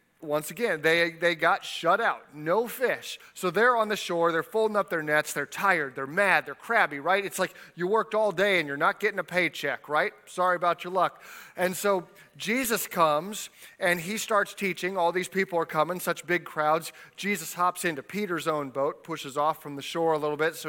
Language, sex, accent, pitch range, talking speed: English, male, American, 160-205 Hz, 215 wpm